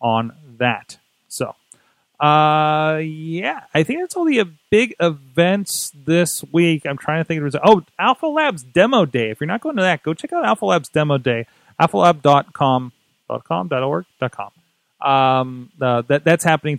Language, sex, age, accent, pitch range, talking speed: English, male, 30-49, American, 125-165 Hz, 170 wpm